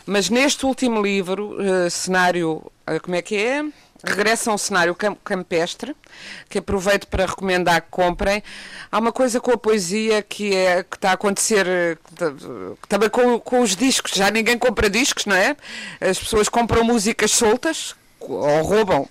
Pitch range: 180-225 Hz